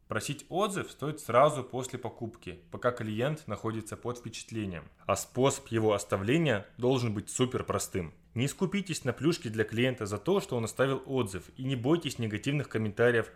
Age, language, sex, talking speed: 20-39, Russian, male, 160 wpm